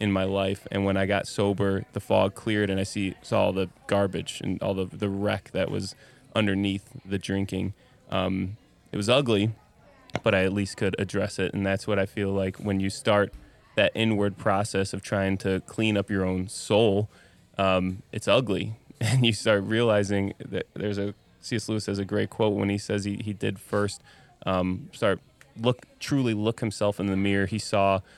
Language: English